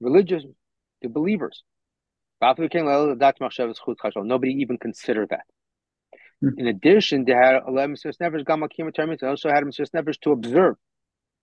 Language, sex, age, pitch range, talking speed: English, male, 40-59, 125-165 Hz, 85 wpm